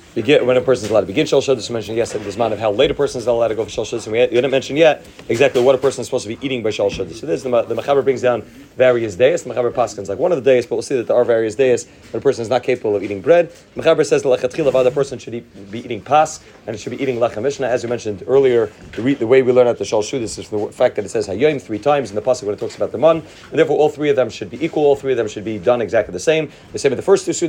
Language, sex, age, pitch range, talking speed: English, male, 30-49, 120-160 Hz, 320 wpm